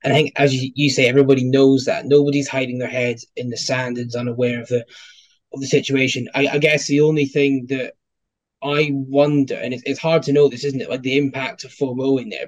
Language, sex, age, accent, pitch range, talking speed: English, male, 20-39, British, 130-145 Hz, 230 wpm